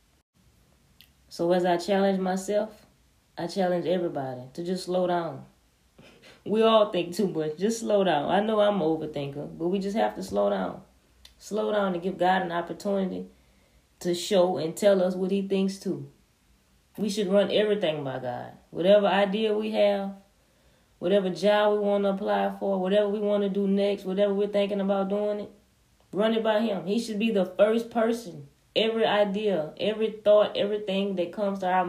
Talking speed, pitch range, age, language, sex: 180 wpm, 155-205 Hz, 20-39, English, female